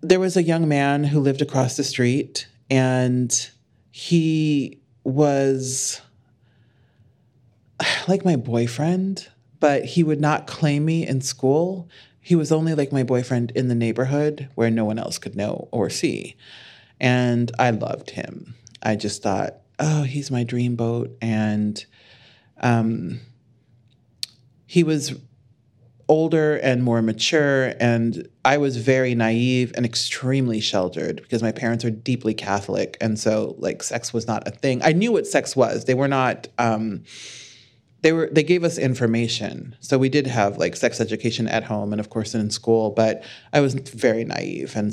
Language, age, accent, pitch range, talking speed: English, 30-49, American, 115-140 Hz, 155 wpm